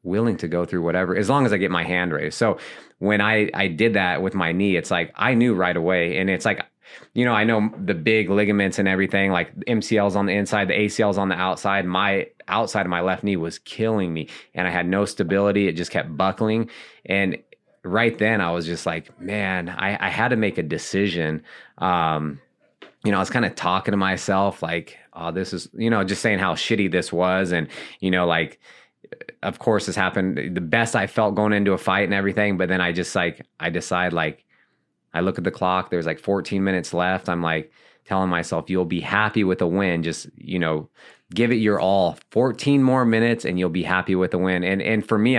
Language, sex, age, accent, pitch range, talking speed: English, male, 20-39, American, 90-105 Hz, 225 wpm